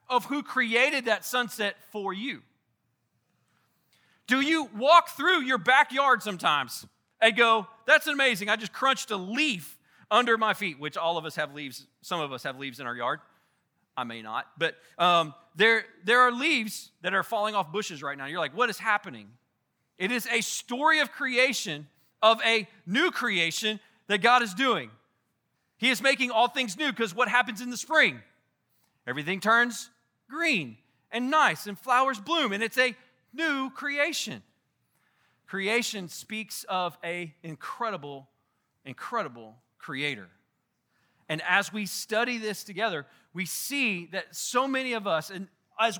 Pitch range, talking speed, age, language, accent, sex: 170-245 Hz, 160 wpm, 40-59, English, American, male